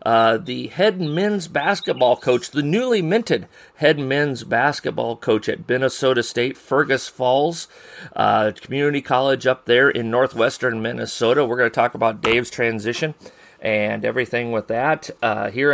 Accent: American